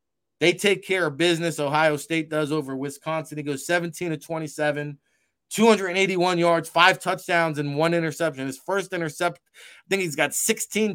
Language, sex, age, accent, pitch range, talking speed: English, male, 20-39, American, 150-175 Hz, 165 wpm